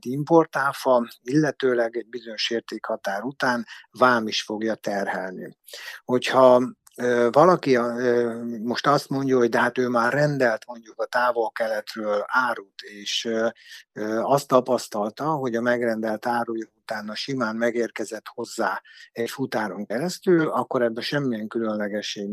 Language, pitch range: Hungarian, 115-135 Hz